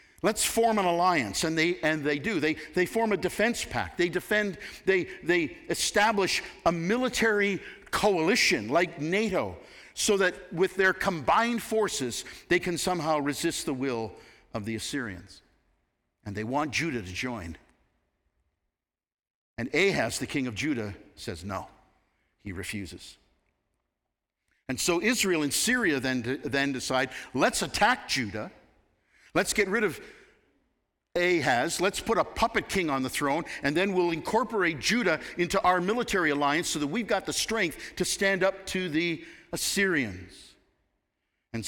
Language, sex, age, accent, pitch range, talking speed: English, male, 50-69, American, 115-180 Hz, 145 wpm